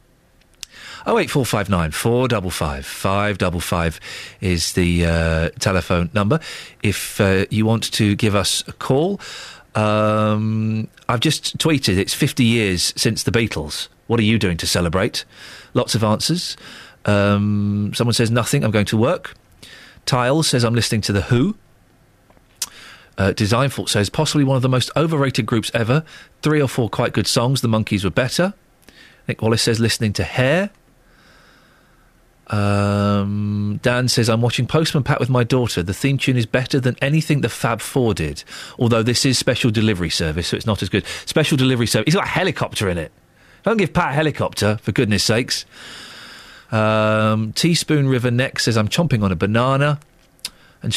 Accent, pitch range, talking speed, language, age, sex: British, 105-135 Hz, 175 wpm, English, 40-59, male